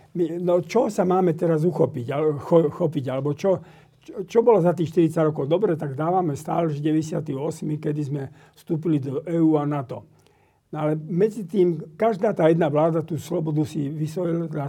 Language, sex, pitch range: Slovak, male, 145-170 Hz